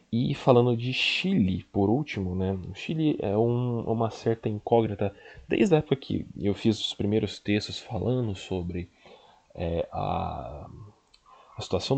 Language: Portuguese